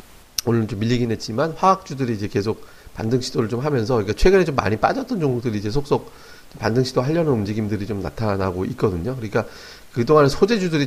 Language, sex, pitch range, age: Korean, male, 105-135 Hz, 40-59